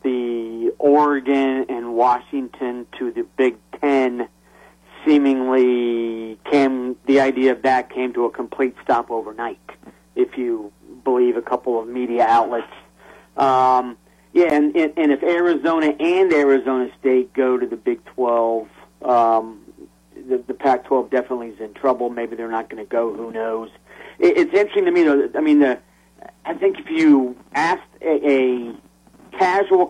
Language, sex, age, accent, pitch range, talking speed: English, male, 40-59, American, 120-150 Hz, 145 wpm